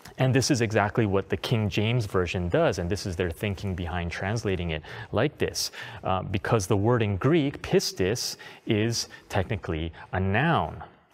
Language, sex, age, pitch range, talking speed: English, male, 30-49, 100-130 Hz, 165 wpm